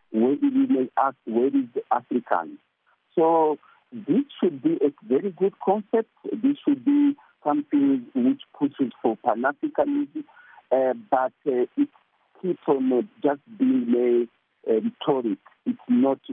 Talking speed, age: 130 wpm, 50-69